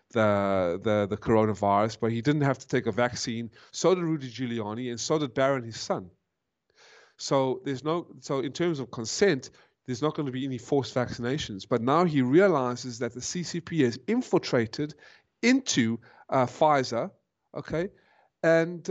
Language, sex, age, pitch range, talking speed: English, male, 30-49, 130-175 Hz, 165 wpm